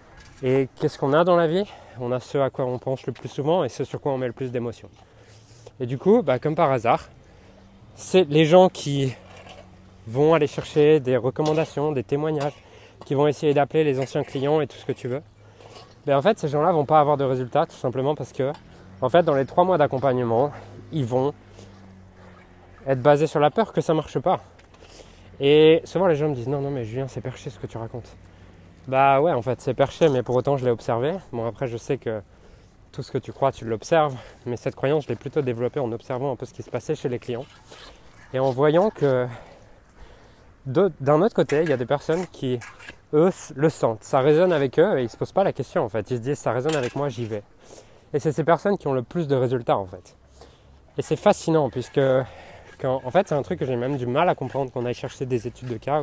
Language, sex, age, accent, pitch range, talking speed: French, male, 20-39, French, 115-150 Hz, 240 wpm